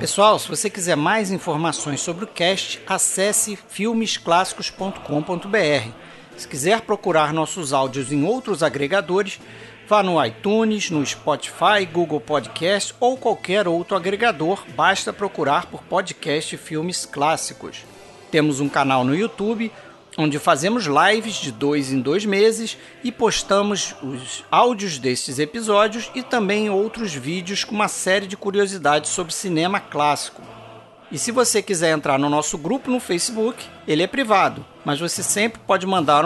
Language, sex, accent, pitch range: Portuguese, male, Brazilian, 155-210 Hz